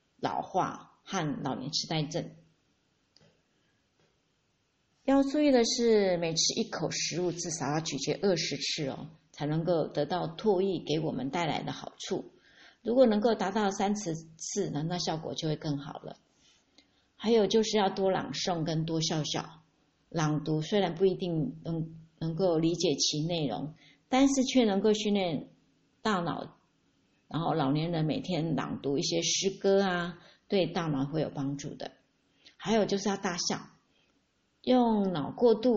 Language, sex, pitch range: Chinese, female, 160-215 Hz